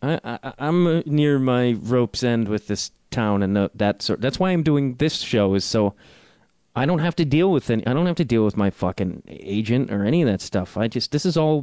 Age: 30-49